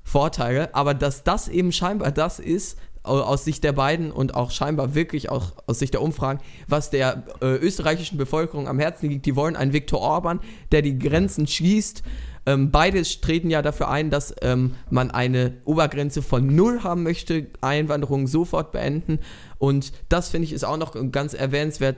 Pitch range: 135-165 Hz